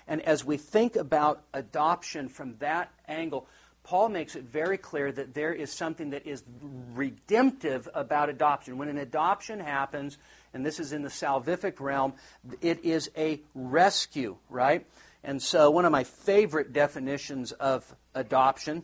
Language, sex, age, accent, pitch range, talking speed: English, male, 50-69, American, 140-170 Hz, 155 wpm